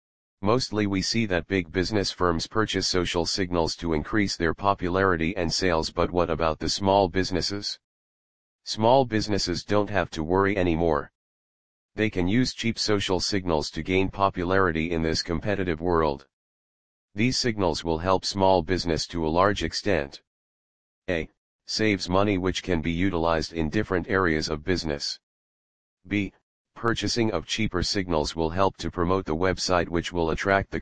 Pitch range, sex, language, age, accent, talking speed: 80-100 Hz, male, English, 40-59, American, 155 wpm